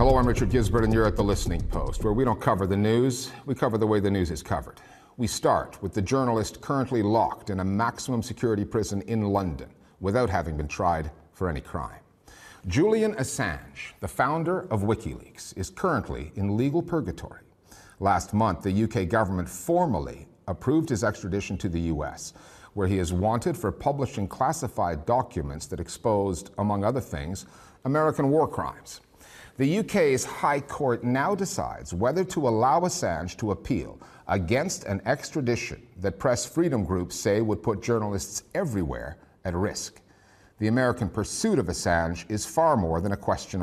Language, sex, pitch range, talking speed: English, male, 95-120 Hz, 165 wpm